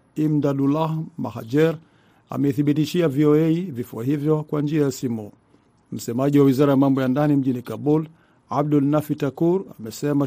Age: 50-69